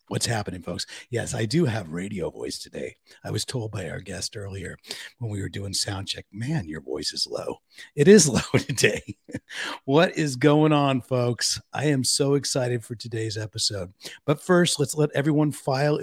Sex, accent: male, American